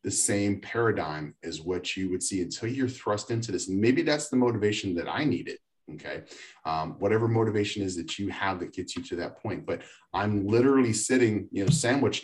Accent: American